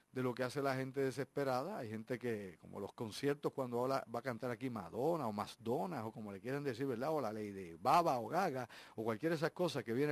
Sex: male